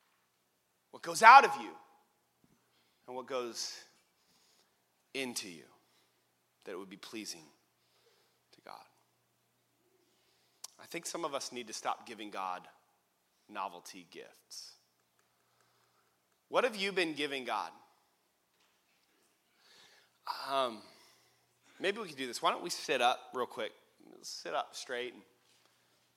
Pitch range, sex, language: 115-180 Hz, male, English